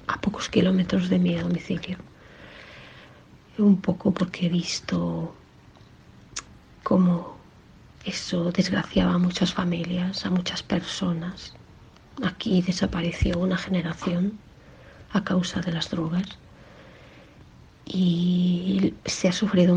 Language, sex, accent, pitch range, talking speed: Spanish, female, Spanish, 175-195 Hz, 100 wpm